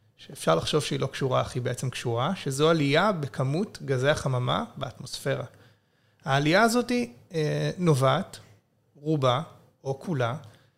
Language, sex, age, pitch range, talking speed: Hebrew, male, 30-49, 130-165 Hz, 115 wpm